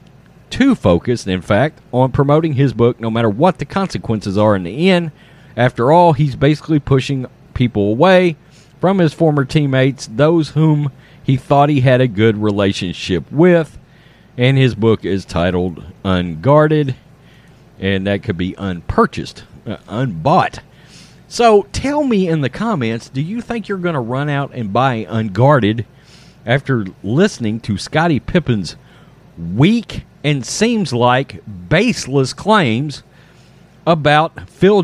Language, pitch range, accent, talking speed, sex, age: English, 120-165 Hz, American, 140 wpm, male, 40-59